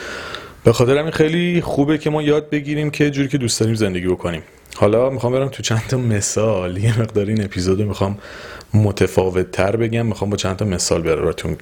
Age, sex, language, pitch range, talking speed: 30-49, male, Persian, 105-140 Hz, 190 wpm